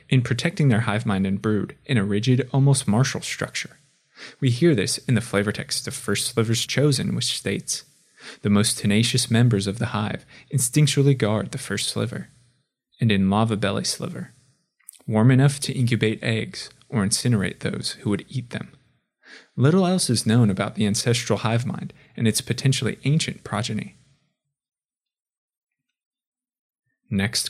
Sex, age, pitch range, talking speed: male, 20-39, 105-140 Hz, 155 wpm